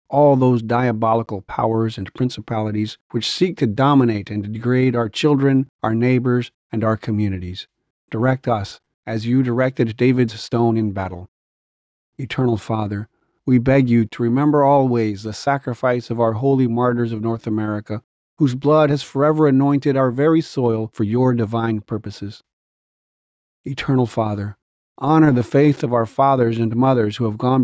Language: English